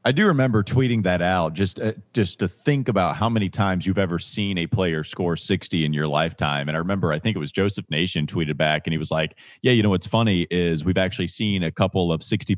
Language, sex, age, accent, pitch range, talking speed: English, male, 30-49, American, 85-115 Hz, 255 wpm